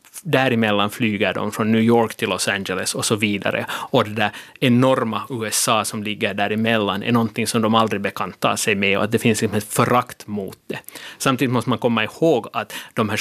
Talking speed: 200 wpm